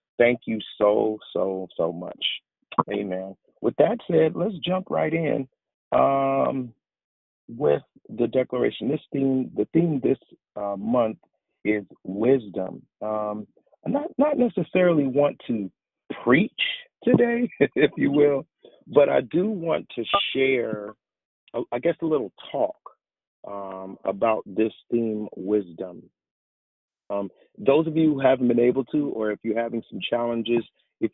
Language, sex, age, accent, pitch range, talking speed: English, male, 40-59, American, 100-145 Hz, 135 wpm